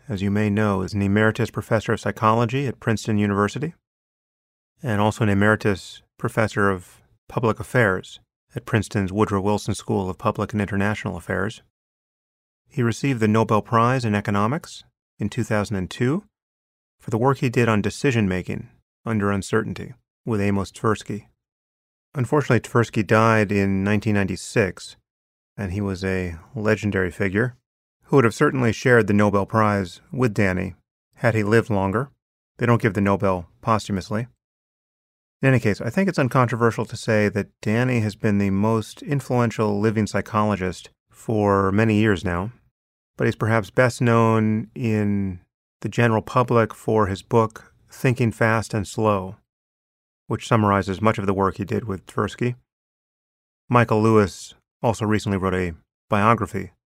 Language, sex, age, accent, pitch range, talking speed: English, male, 30-49, American, 100-115 Hz, 145 wpm